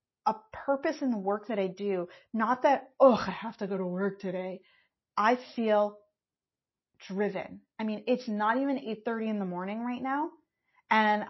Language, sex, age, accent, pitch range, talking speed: English, female, 30-49, American, 205-265 Hz, 175 wpm